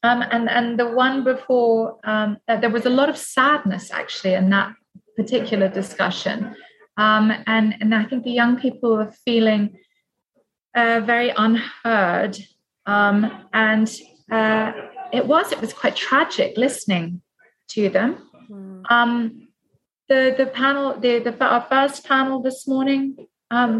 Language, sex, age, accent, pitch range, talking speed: English, female, 30-49, British, 215-250 Hz, 140 wpm